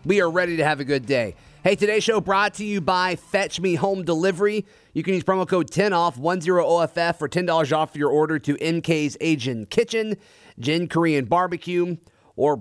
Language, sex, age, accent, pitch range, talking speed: English, male, 30-49, American, 140-170 Hz, 215 wpm